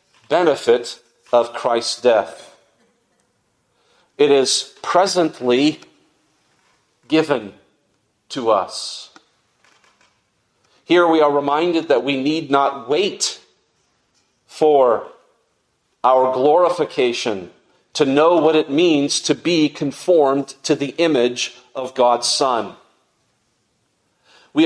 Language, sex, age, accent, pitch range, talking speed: English, male, 40-59, American, 135-175 Hz, 90 wpm